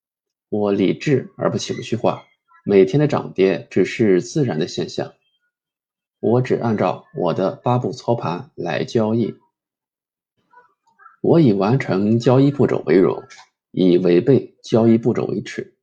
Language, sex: Chinese, male